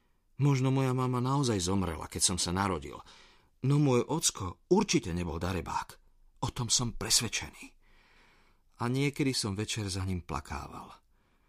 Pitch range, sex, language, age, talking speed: 95-135 Hz, male, Slovak, 50-69, 135 wpm